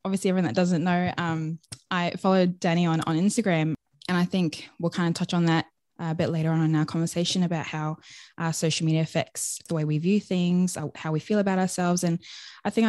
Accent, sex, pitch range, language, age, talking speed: Australian, female, 155-180 Hz, English, 20-39, 220 wpm